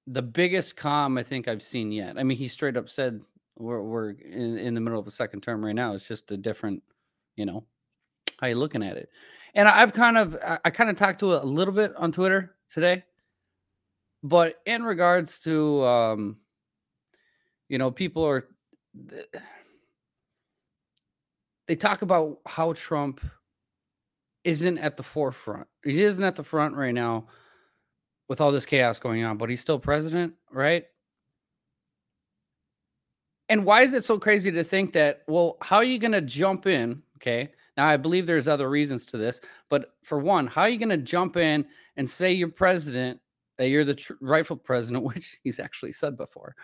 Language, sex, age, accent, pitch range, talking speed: English, male, 20-39, American, 125-175 Hz, 180 wpm